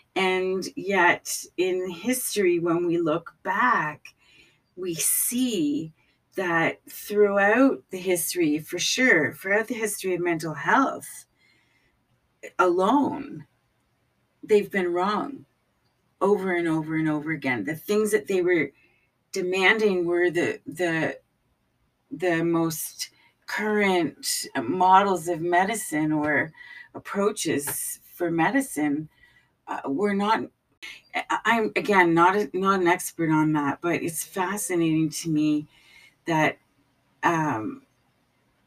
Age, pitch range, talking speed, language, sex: 40-59, 160-205 Hz, 105 wpm, English, female